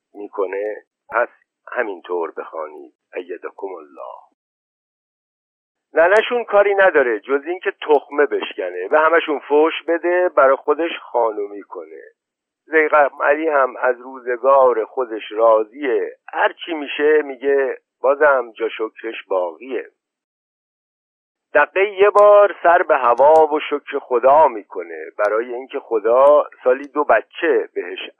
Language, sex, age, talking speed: Persian, male, 50-69, 115 wpm